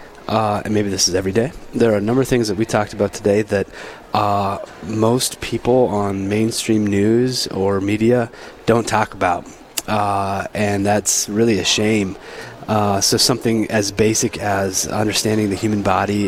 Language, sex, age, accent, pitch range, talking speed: English, male, 20-39, American, 105-120 Hz, 170 wpm